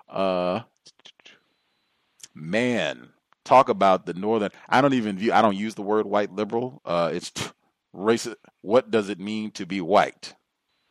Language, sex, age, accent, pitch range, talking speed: English, male, 40-59, American, 95-120 Hz, 160 wpm